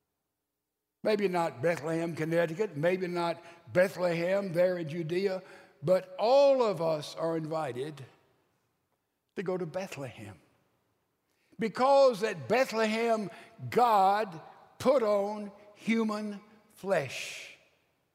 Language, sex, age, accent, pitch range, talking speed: English, male, 60-79, American, 155-205 Hz, 95 wpm